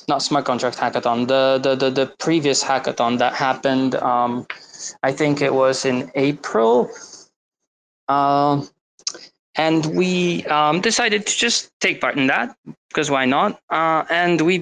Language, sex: English, male